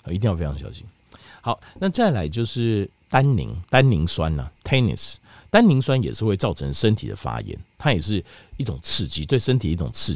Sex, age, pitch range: male, 50-69, 90-125 Hz